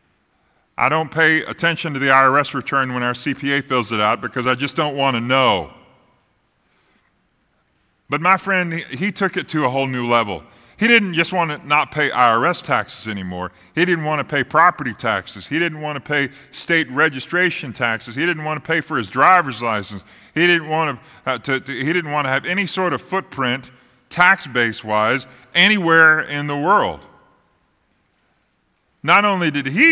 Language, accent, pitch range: English, American, 115-165 Hz